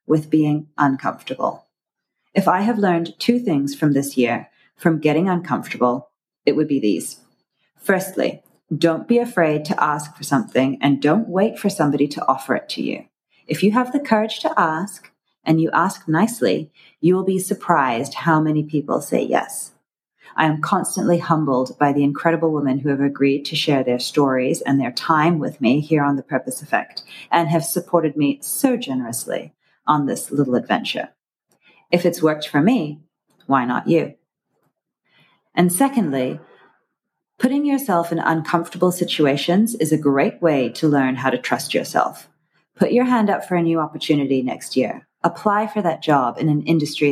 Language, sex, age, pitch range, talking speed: English, female, 30-49, 145-180 Hz, 170 wpm